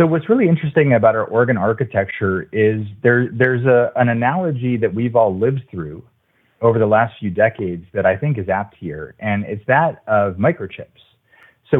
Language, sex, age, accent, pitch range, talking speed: English, male, 30-49, American, 100-125 Hz, 185 wpm